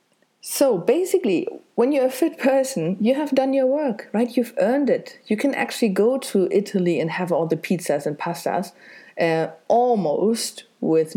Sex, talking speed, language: female, 170 wpm, English